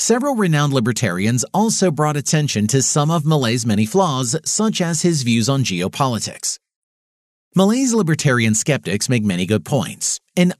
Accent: American